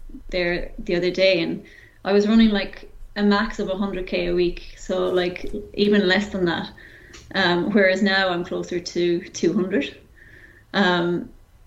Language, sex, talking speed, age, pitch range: English, female, 150 wpm, 20-39, 180-205 Hz